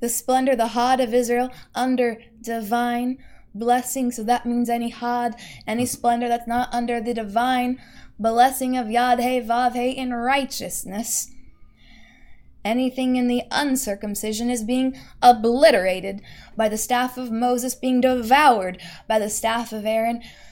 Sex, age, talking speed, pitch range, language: female, 20-39, 135 wpm, 220-245 Hz, English